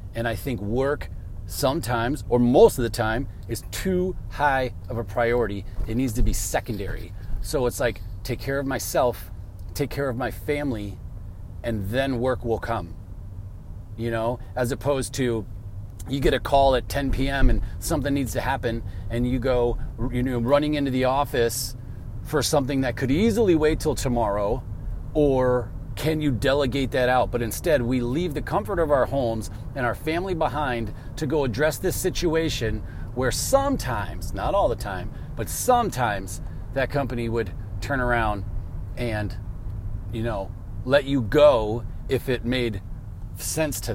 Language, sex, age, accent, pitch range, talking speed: English, male, 30-49, American, 105-140 Hz, 165 wpm